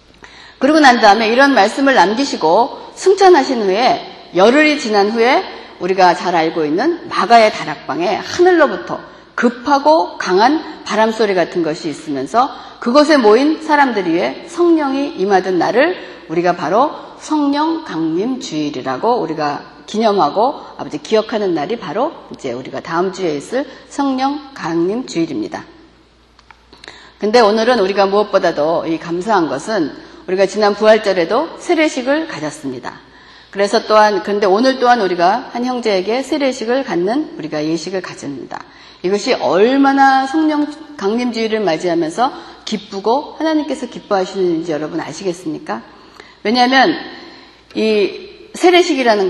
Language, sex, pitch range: Korean, female, 195-315 Hz